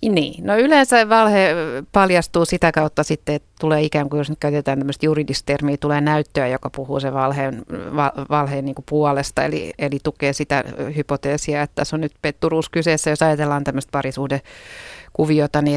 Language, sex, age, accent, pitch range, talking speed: Finnish, female, 30-49, native, 140-160 Hz, 170 wpm